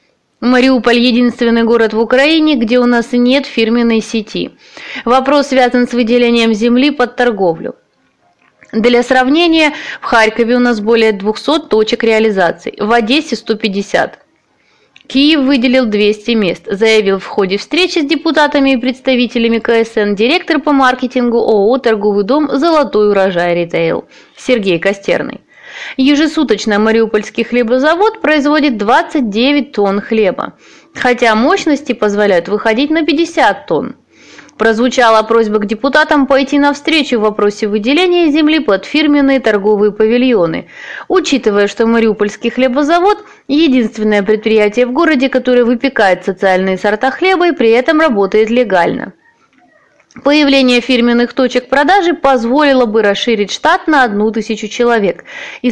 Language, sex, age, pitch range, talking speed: Russian, female, 20-39, 220-290 Hz, 125 wpm